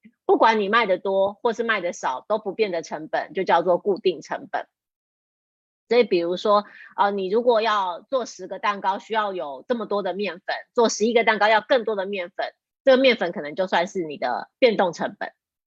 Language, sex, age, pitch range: Chinese, female, 30-49, 195-255 Hz